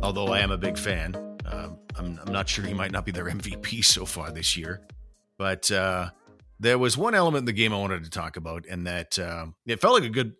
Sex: male